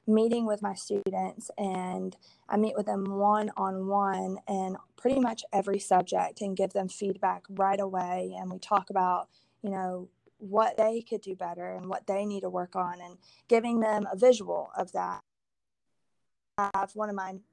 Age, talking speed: 20-39, 175 wpm